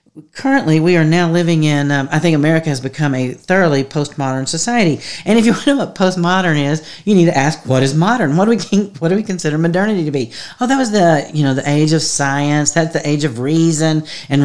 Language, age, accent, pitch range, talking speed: English, 40-59, American, 135-165 Hz, 240 wpm